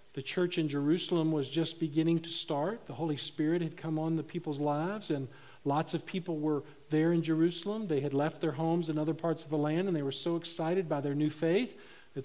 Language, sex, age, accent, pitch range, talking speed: English, male, 50-69, American, 150-190 Hz, 230 wpm